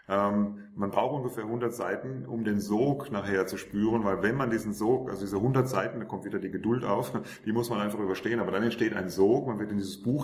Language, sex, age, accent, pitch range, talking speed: German, male, 30-49, German, 105-125 Hz, 245 wpm